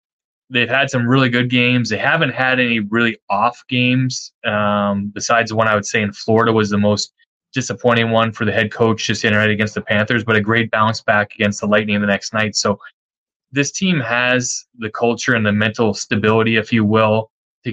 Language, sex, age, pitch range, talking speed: English, male, 20-39, 105-120 Hz, 210 wpm